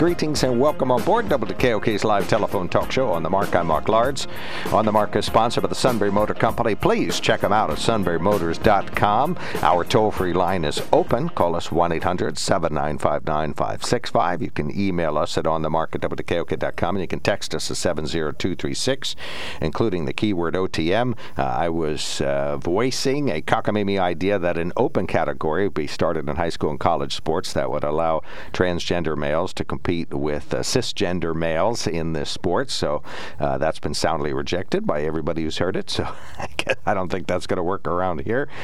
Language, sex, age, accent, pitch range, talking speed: English, male, 60-79, American, 80-100 Hz, 180 wpm